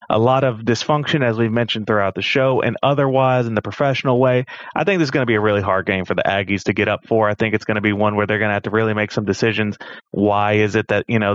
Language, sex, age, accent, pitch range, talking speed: English, male, 30-49, American, 105-120 Hz, 300 wpm